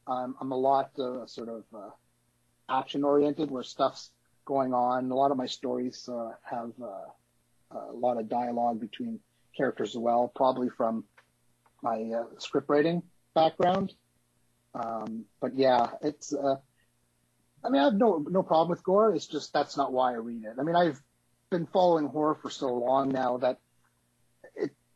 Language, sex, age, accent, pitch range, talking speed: English, male, 30-49, American, 120-155 Hz, 165 wpm